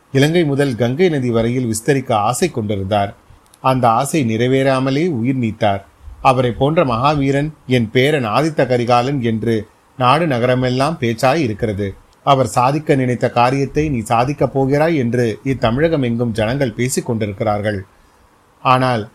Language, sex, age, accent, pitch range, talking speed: Tamil, male, 30-49, native, 115-145 Hz, 100 wpm